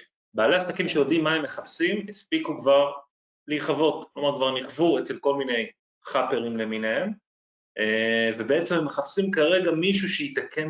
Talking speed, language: 130 wpm, Hebrew